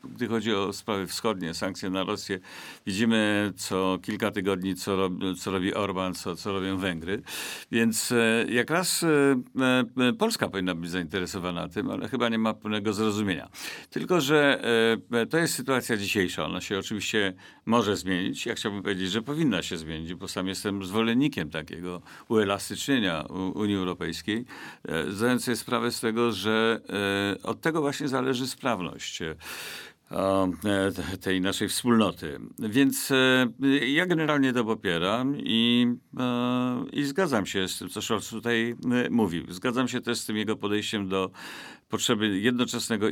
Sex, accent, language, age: male, native, Polish, 50-69